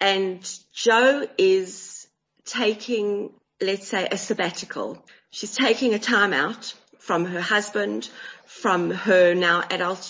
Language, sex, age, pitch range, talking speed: English, female, 30-49, 165-205 Hz, 120 wpm